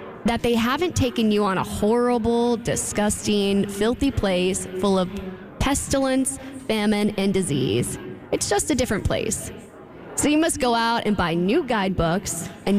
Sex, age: female, 10-29